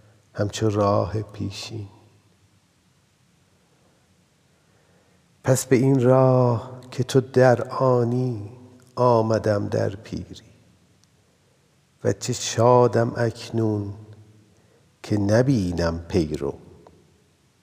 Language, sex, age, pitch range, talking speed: Persian, male, 50-69, 100-120 Hz, 70 wpm